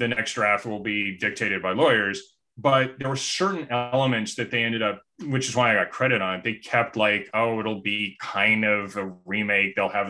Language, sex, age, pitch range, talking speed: English, male, 30-49, 105-130 Hz, 220 wpm